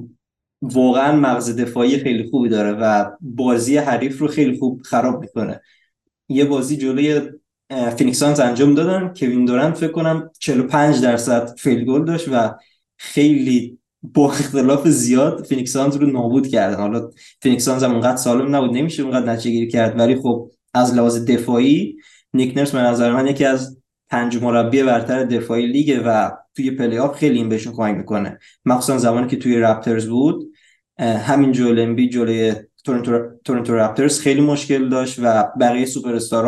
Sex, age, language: male, 20-39, Persian